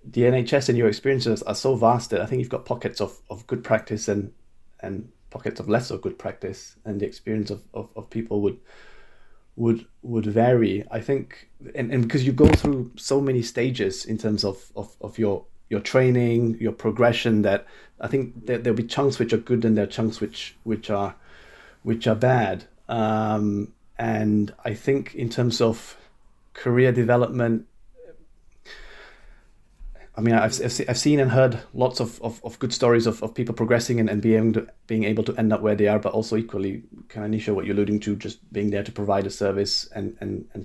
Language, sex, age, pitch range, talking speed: English, male, 30-49, 105-120 Hz, 200 wpm